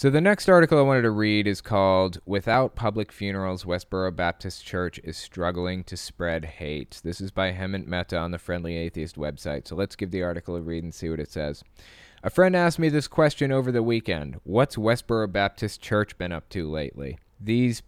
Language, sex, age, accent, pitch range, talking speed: English, male, 20-39, American, 85-110 Hz, 205 wpm